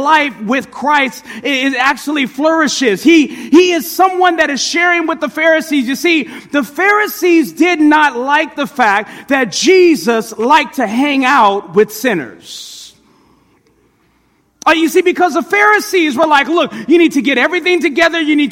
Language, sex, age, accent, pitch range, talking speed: English, male, 30-49, American, 255-335 Hz, 160 wpm